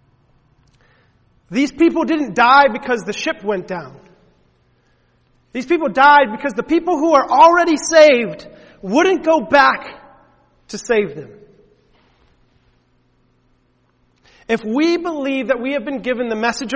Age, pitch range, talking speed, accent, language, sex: 40-59, 175-275 Hz, 125 wpm, American, English, male